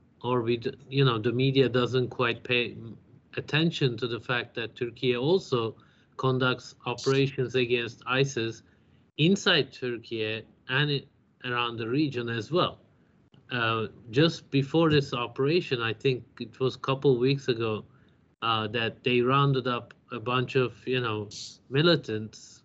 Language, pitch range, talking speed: Turkish, 115-135 Hz, 140 wpm